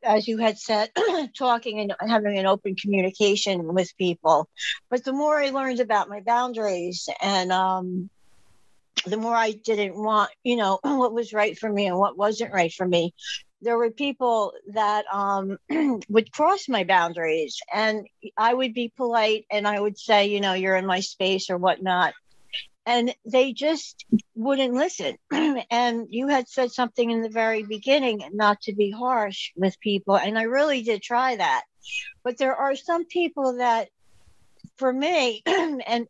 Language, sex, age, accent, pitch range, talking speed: English, female, 60-79, American, 205-255 Hz, 170 wpm